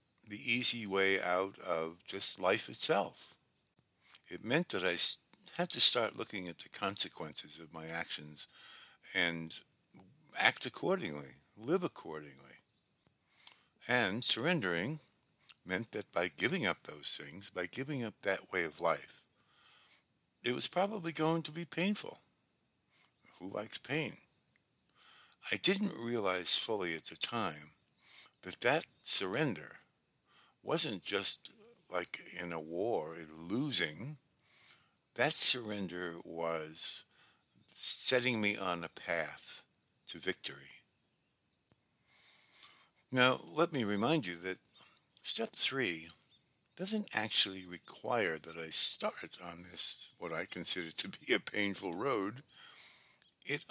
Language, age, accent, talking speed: English, 60-79, American, 120 wpm